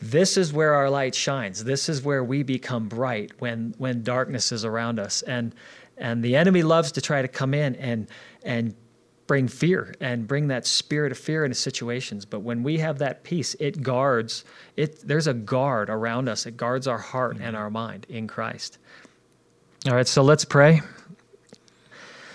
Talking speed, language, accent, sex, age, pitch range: 185 wpm, English, American, male, 40-59, 120-145 Hz